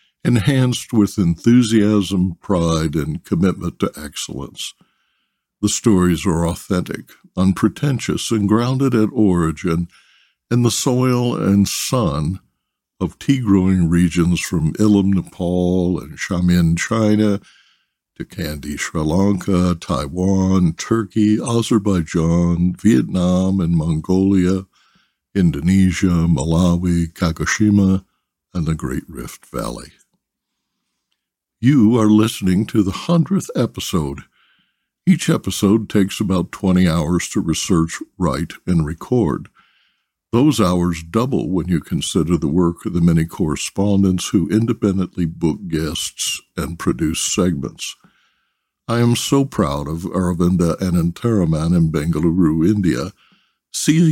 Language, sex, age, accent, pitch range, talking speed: English, male, 60-79, American, 85-110 Hz, 110 wpm